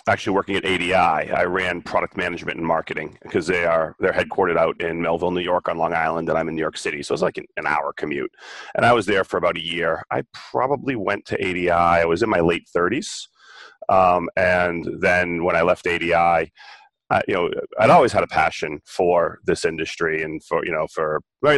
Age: 30-49